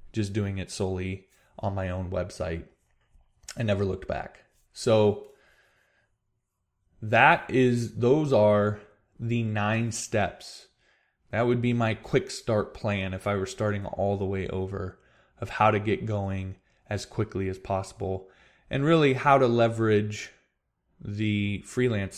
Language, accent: English, American